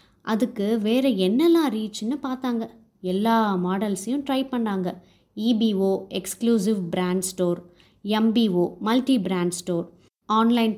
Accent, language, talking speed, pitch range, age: native, Tamil, 100 wpm, 190-245 Hz, 20-39